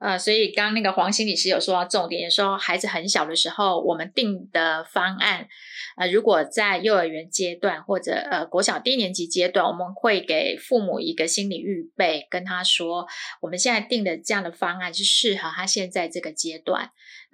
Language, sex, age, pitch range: Chinese, female, 20-39, 175-210 Hz